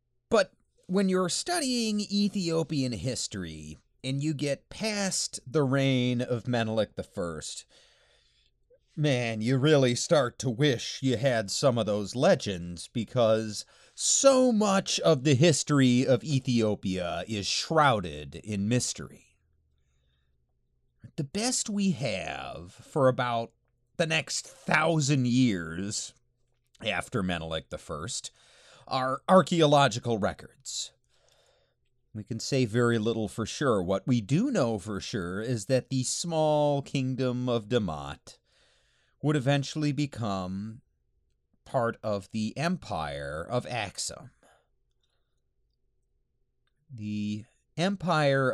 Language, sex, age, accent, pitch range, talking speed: English, male, 30-49, American, 110-145 Hz, 105 wpm